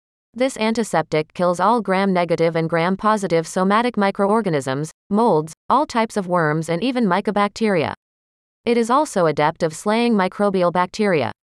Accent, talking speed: American, 130 wpm